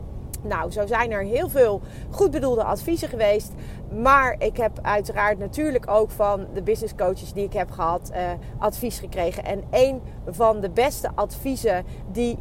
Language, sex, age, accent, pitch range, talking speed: Dutch, female, 40-59, Dutch, 205-260 Hz, 160 wpm